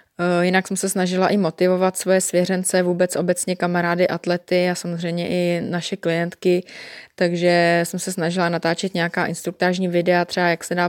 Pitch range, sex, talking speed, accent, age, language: 170-185 Hz, female, 160 wpm, native, 20-39, Czech